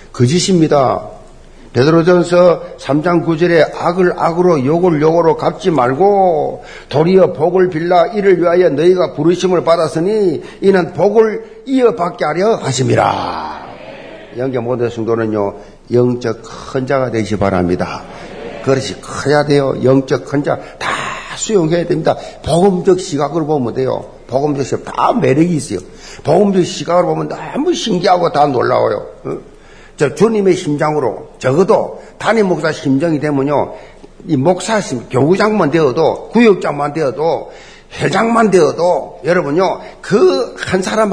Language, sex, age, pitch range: Korean, male, 50-69, 145-215 Hz